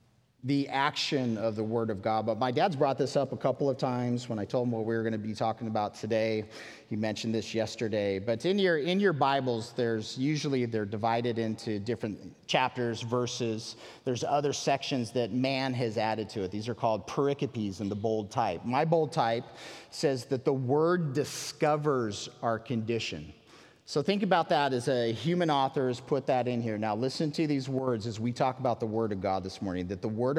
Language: English